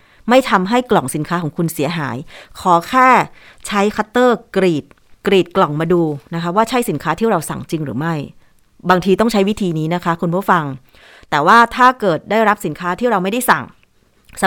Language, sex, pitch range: Thai, female, 170-225 Hz